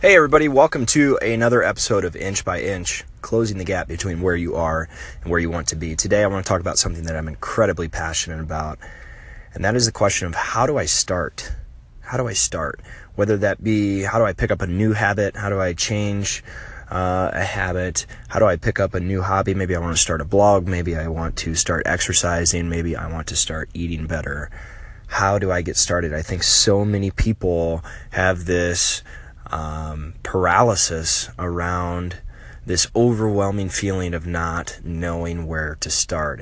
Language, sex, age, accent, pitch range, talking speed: English, male, 20-39, American, 80-100 Hz, 195 wpm